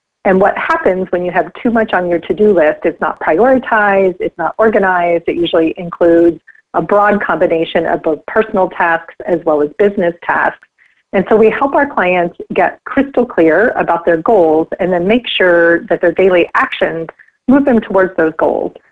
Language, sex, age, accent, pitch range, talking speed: English, female, 30-49, American, 170-220 Hz, 185 wpm